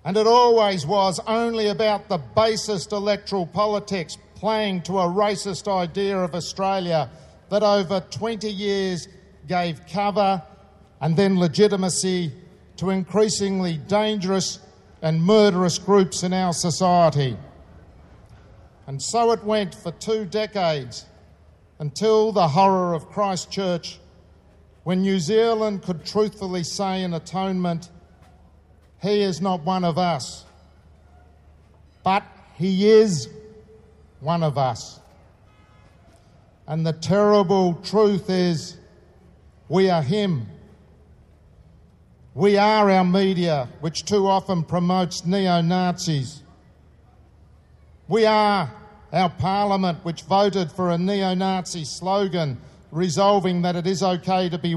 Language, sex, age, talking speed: English, male, 50-69, 110 wpm